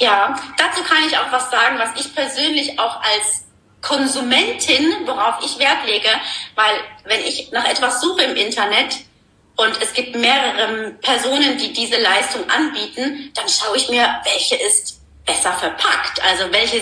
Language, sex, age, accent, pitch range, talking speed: German, female, 30-49, German, 190-295 Hz, 155 wpm